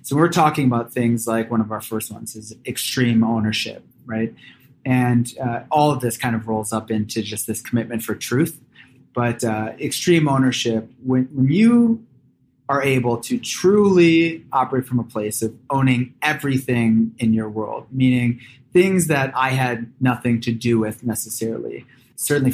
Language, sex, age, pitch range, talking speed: English, male, 20-39, 110-130 Hz, 165 wpm